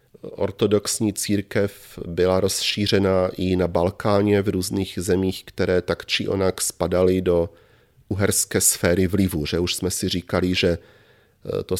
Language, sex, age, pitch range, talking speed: Czech, male, 40-59, 85-110 Hz, 125 wpm